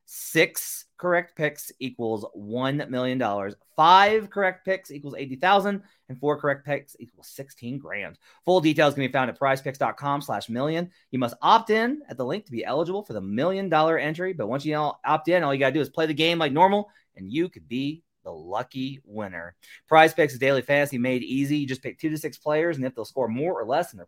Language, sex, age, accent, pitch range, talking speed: English, male, 30-49, American, 120-165 Hz, 215 wpm